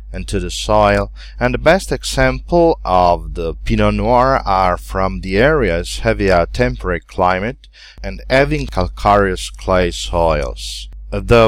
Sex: male